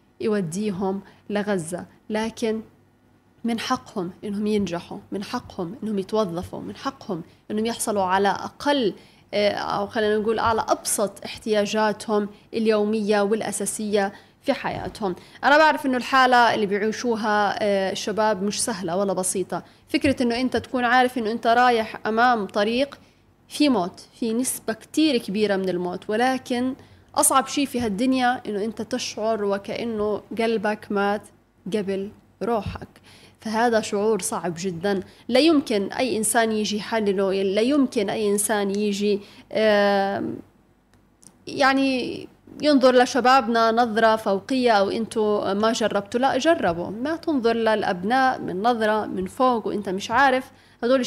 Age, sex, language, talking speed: 20-39, female, Arabic, 125 wpm